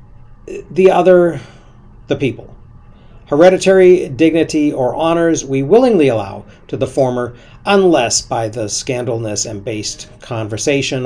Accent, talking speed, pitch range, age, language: American, 115 wpm, 115-150 Hz, 40-59, English